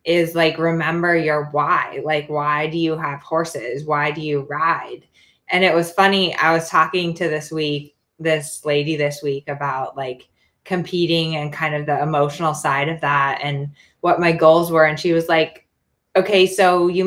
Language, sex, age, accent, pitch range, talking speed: English, female, 20-39, American, 155-185 Hz, 185 wpm